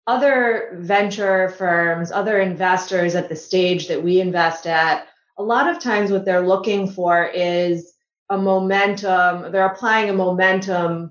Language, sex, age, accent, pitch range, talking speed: English, female, 30-49, American, 180-210 Hz, 145 wpm